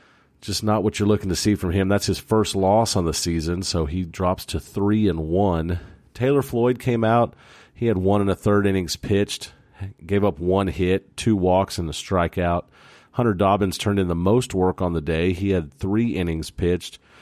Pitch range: 85-105 Hz